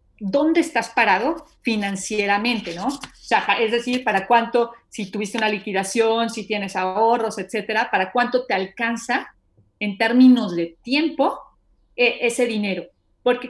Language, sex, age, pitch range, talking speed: Spanish, female, 40-59, 205-255 Hz, 140 wpm